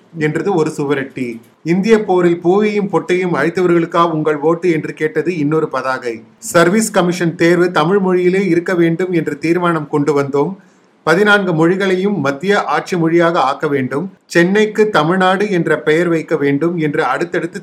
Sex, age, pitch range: male, 30-49, 150-185 Hz